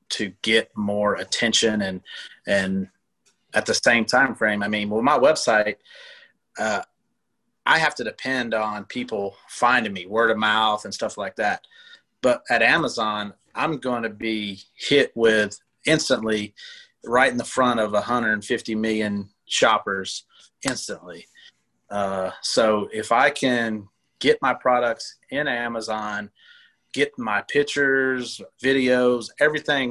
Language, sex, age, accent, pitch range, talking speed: English, male, 30-49, American, 105-125 Hz, 135 wpm